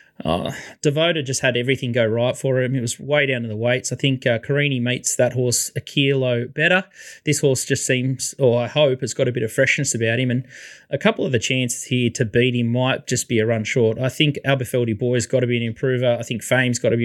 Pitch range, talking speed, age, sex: 120-135 Hz, 255 wpm, 20-39, male